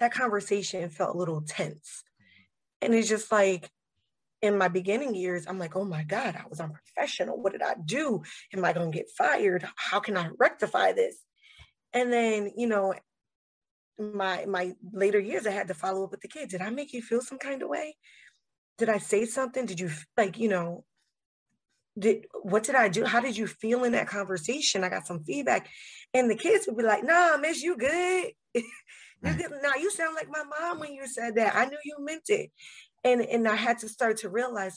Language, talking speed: English, 205 wpm